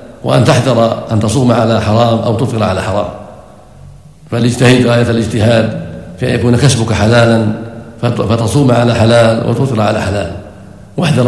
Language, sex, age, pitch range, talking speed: Arabic, male, 50-69, 115-120 Hz, 135 wpm